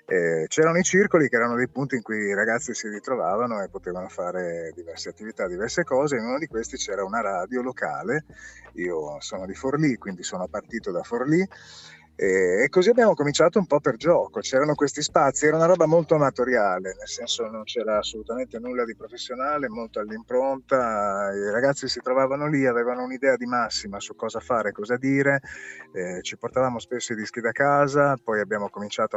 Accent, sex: native, male